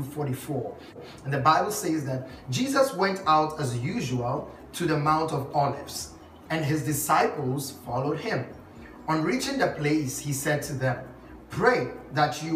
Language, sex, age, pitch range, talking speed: English, male, 30-49, 130-170 Hz, 155 wpm